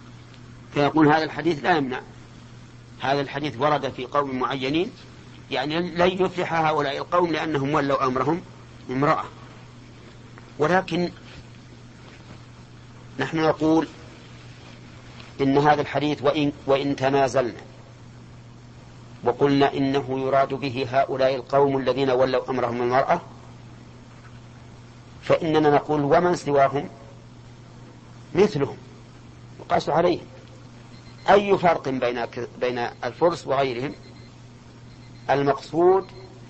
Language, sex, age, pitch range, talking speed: Arabic, male, 50-69, 120-145 Hz, 85 wpm